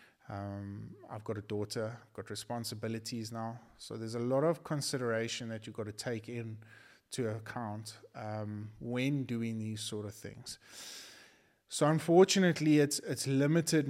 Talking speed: 145 wpm